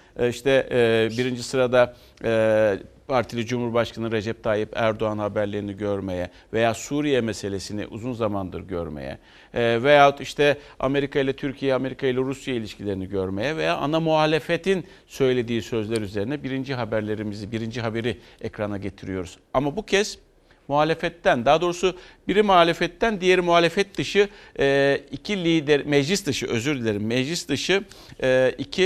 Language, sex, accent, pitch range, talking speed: Turkish, male, native, 110-170 Hz, 120 wpm